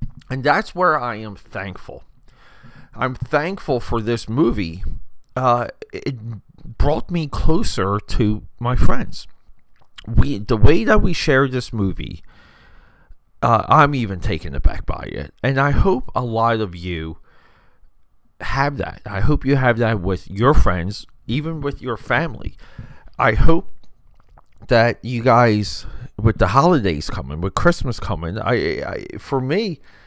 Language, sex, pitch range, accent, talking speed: English, male, 100-130 Hz, American, 140 wpm